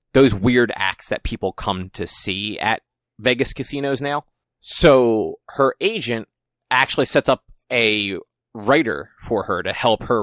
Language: English